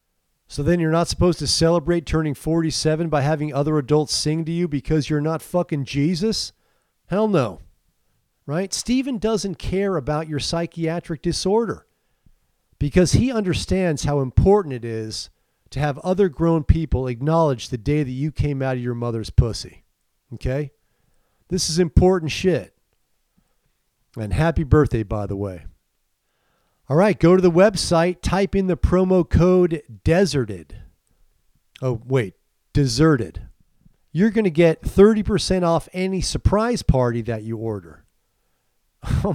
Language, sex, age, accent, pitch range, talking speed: English, male, 40-59, American, 115-170 Hz, 140 wpm